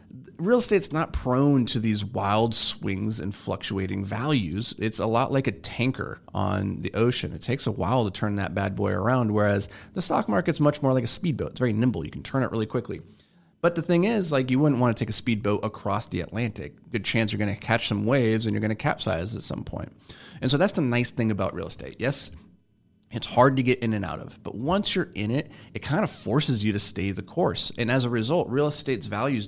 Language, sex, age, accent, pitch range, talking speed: English, male, 30-49, American, 105-130 Hz, 240 wpm